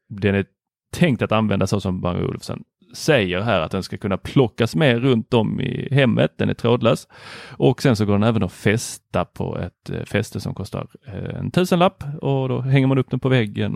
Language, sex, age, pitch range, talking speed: Swedish, male, 30-49, 105-145 Hz, 210 wpm